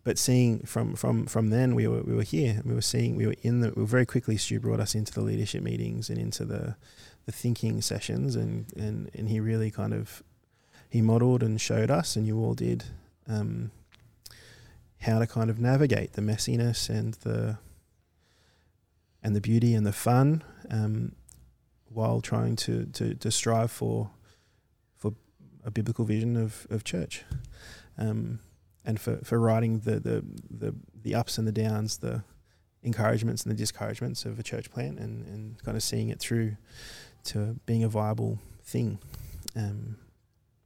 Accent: Australian